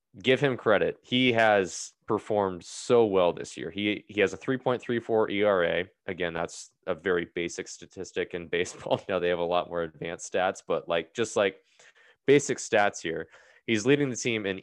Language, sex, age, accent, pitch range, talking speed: English, male, 20-39, American, 90-115 Hz, 185 wpm